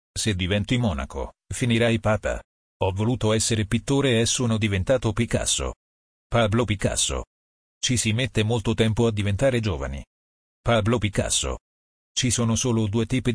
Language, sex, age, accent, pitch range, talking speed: Italian, male, 40-59, native, 80-120 Hz, 135 wpm